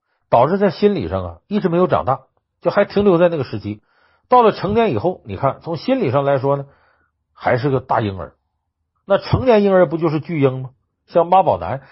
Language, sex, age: Chinese, male, 50-69